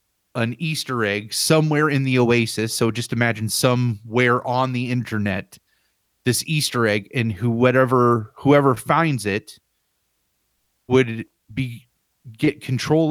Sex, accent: male, American